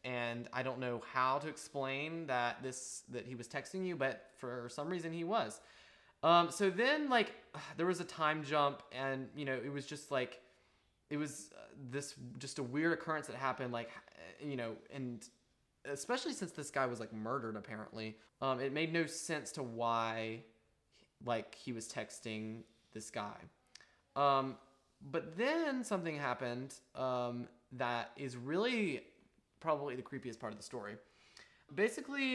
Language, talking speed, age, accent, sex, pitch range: English, 160 wpm, 20-39, American, male, 120-150 Hz